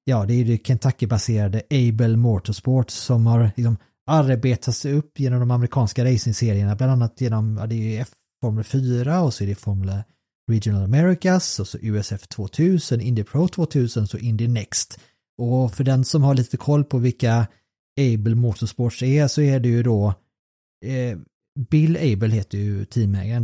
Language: Swedish